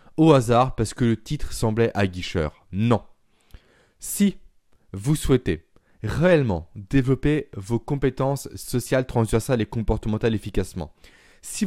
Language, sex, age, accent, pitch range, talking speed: French, male, 20-39, French, 100-135 Hz, 120 wpm